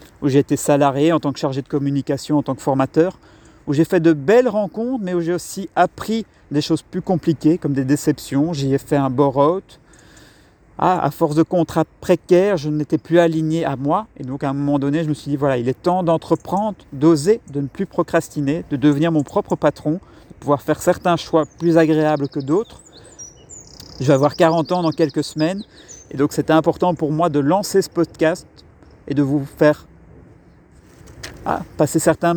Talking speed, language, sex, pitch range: 205 wpm, French, male, 145-170 Hz